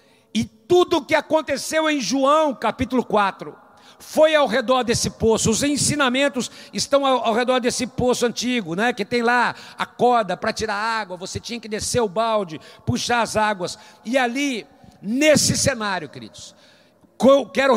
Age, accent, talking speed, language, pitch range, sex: 60-79, Brazilian, 160 wpm, Portuguese, 205-265 Hz, male